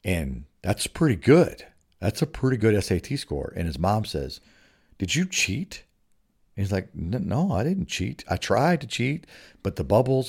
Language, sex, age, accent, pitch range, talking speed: English, male, 50-69, American, 95-120 Hz, 180 wpm